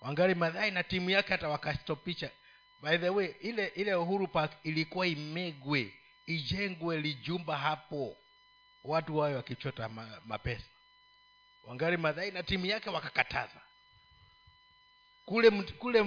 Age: 50-69